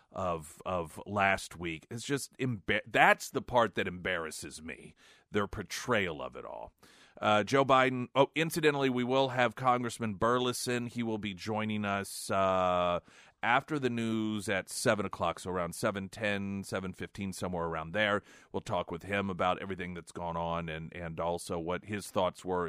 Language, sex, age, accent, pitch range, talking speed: English, male, 40-59, American, 85-105 Hz, 170 wpm